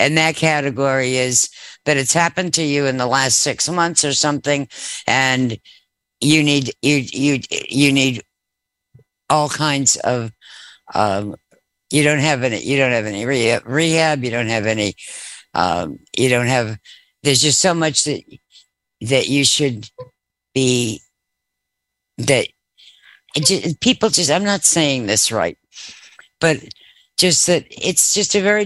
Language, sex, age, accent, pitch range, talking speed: English, female, 60-79, American, 130-160 Hz, 145 wpm